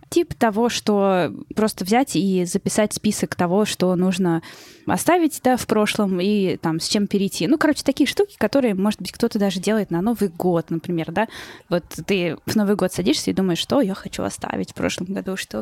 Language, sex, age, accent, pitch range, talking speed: Russian, female, 10-29, native, 190-245 Hz, 195 wpm